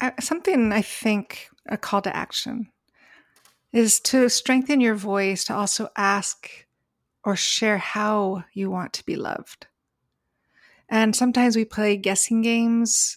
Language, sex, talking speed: English, female, 130 wpm